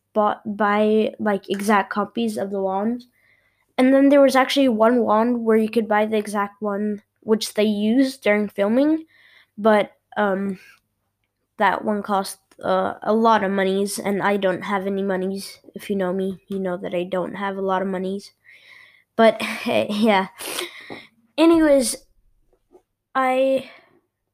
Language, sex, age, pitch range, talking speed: English, female, 10-29, 205-255 Hz, 150 wpm